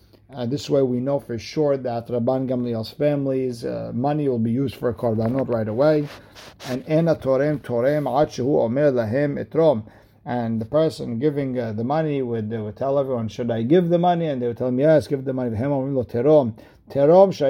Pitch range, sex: 115-145 Hz, male